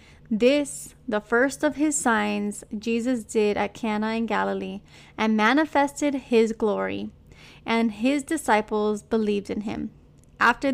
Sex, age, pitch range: female, 20-39, 220-255 Hz